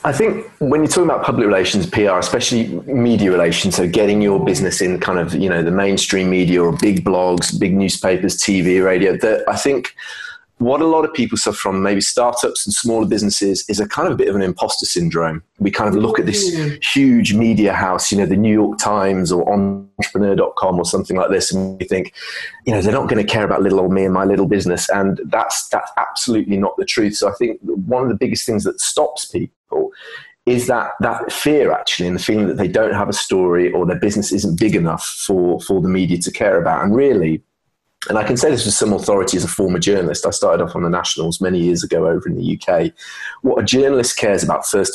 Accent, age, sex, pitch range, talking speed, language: British, 30-49, male, 95-120 Hz, 230 wpm, English